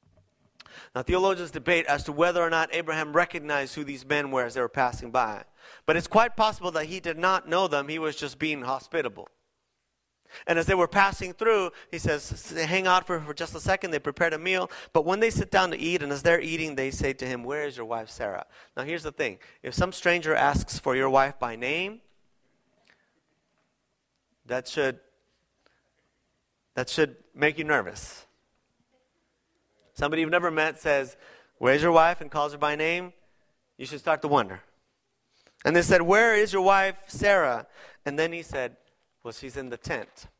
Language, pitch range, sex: English, 140-180 Hz, male